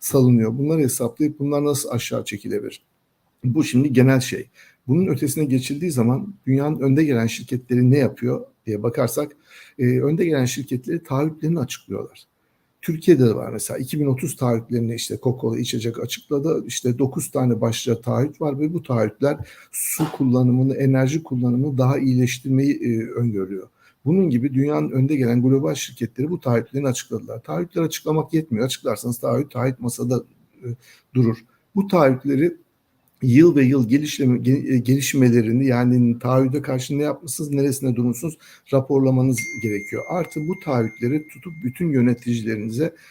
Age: 60-79